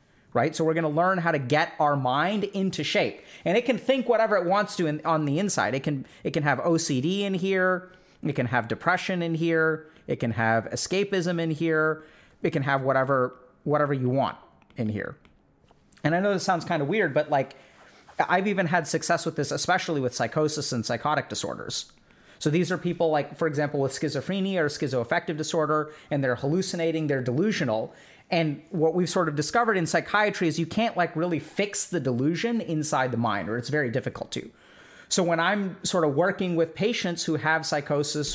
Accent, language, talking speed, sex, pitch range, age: American, English, 200 wpm, male, 145-185 Hz, 30-49